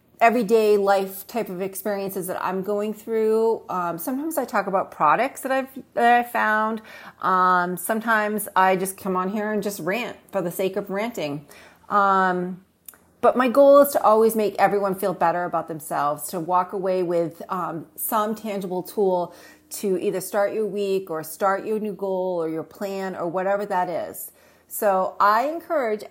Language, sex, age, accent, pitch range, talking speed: English, female, 40-59, American, 180-225 Hz, 175 wpm